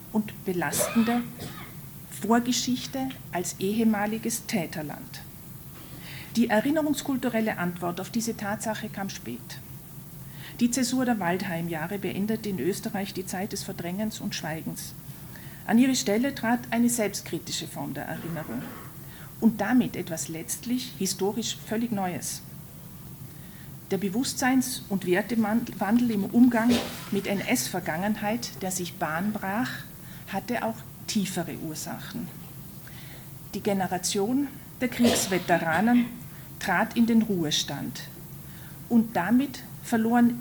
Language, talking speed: German, 100 wpm